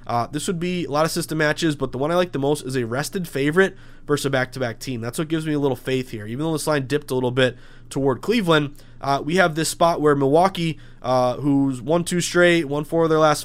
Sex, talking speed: male, 265 wpm